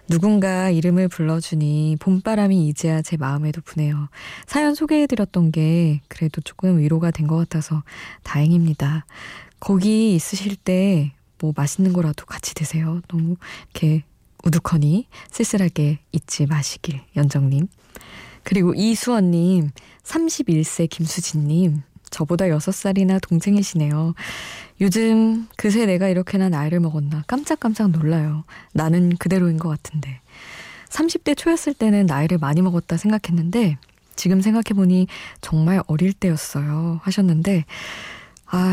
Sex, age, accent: female, 20-39, native